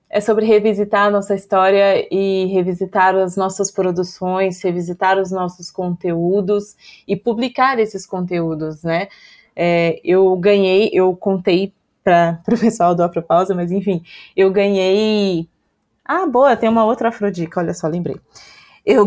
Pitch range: 180-210 Hz